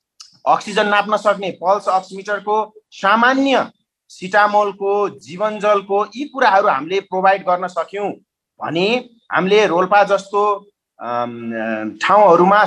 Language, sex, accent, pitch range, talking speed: English, male, Indian, 180-220 Hz, 85 wpm